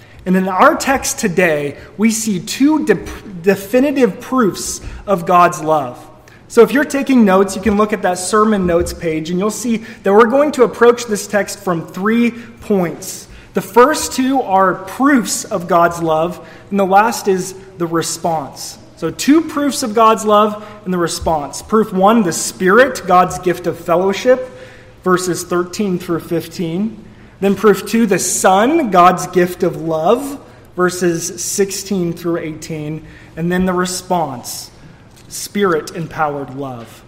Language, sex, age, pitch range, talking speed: English, male, 20-39, 160-215 Hz, 150 wpm